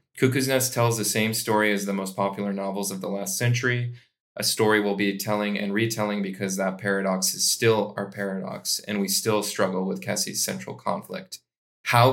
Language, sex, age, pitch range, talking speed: English, male, 20-39, 100-110 Hz, 190 wpm